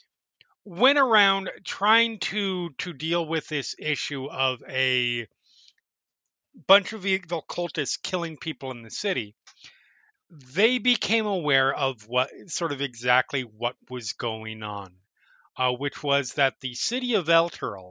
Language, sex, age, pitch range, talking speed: English, male, 30-49, 130-180 Hz, 135 wpm